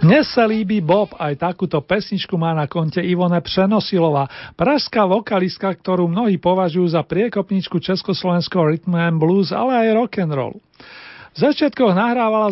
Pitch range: 165-200 Hz